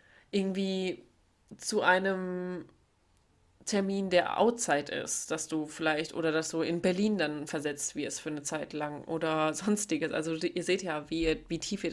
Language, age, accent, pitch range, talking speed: German, 30-49, German, 155-180 Hz, 170 wpm